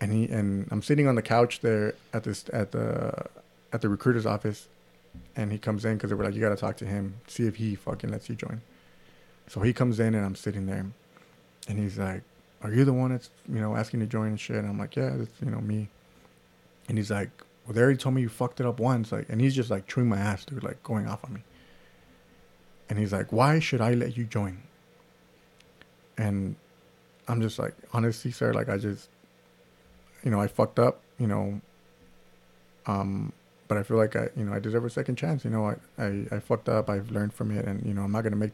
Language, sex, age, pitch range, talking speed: English, male, 30-49, 100-120 Hz, 235 wpm